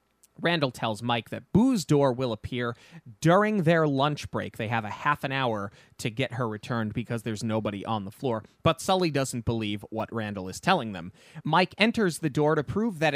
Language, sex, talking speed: English, male, 200 wpm